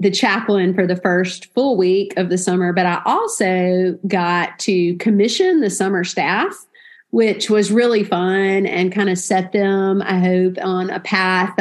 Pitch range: 185-210 Hz